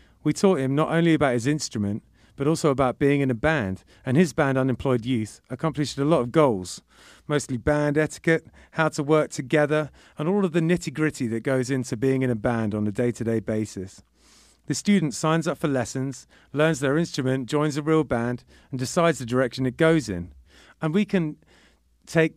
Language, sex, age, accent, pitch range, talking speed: English, male, 40-59, British, 115-155 Hz, 195 wpm